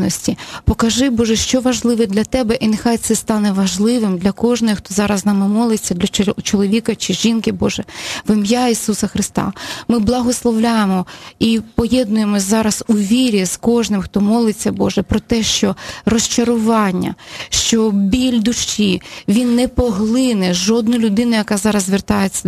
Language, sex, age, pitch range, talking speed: Ukrainian, female, 20-39, 205-240 Hz, 145 wpm